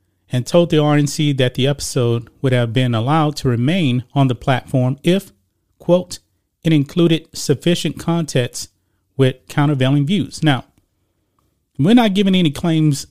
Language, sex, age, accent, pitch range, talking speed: English, male, 30-49, American, 115-165 Hz, 140 wpm